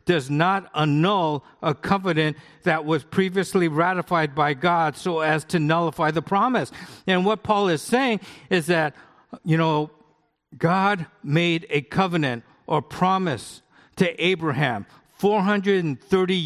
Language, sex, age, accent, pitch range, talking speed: English, male, 50-69, American, 140-175 Hz, 130 wpm